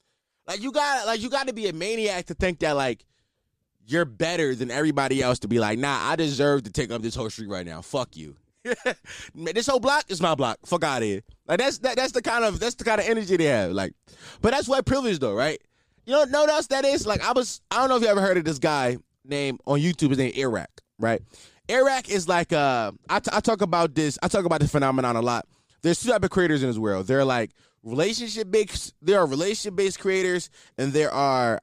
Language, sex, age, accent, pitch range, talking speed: English, male, 20-39, American, 120-200 Hz, 245 wpm